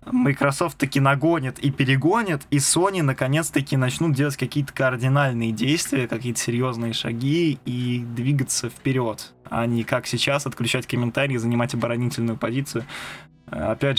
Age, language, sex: 20-39, Russian, male